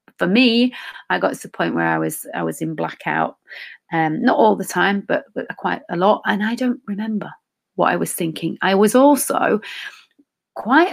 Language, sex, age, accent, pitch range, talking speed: English, female, 30-49, British, 170-245 Hz, 200 wpm